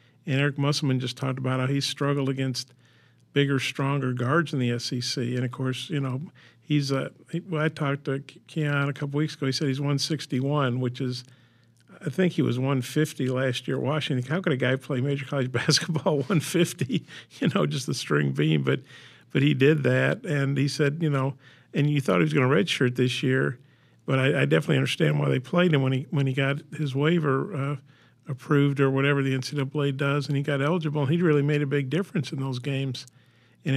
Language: English